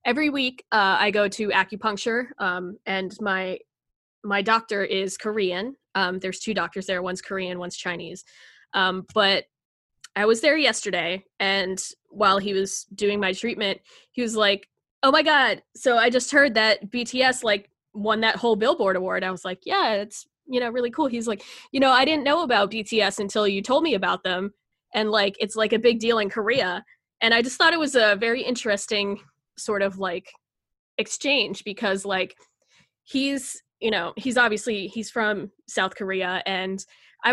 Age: 10-29